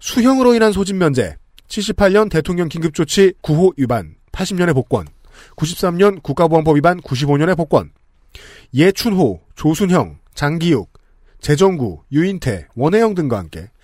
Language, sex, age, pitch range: Korean, male, 40-59, 140-195 Hz